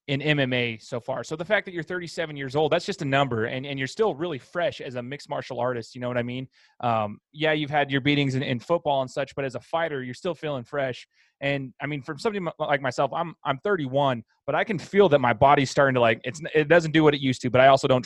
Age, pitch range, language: 20-39, 130-150 Hz, English